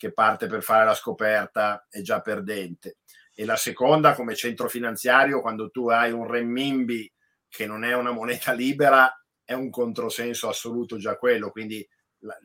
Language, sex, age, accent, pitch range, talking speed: Italian, male, 50-69, native, 110-125 Hz, 160 wpm